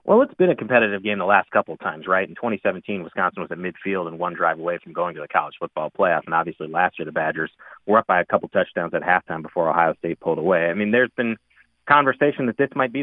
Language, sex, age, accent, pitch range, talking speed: English, male, 30-49, American, 100-130 Hz, 265 wpm